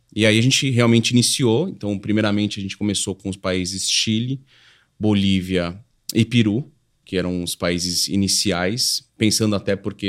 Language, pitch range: Portuguese, 95-120 Hz